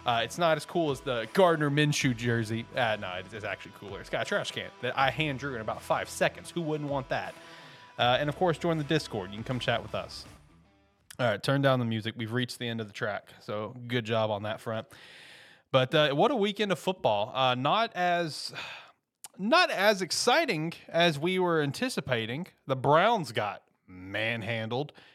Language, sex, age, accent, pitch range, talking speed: English, male, 30-49, American, 115-150 Hz, 200 wpm